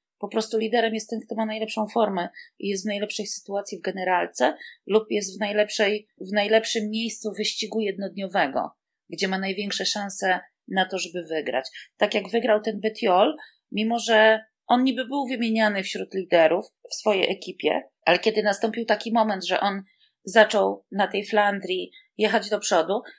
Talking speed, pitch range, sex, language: 165 wpm, 210-240 Hz, female, Polish